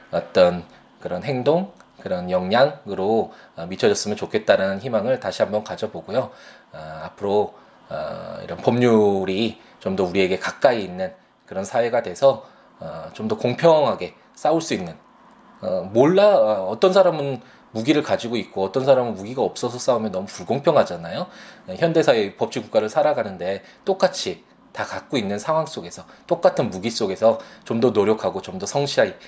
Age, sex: 20-39, male